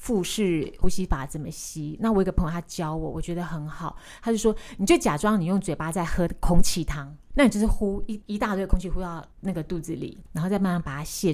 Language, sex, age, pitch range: Chinese, female, 20-39, 165-210 Hz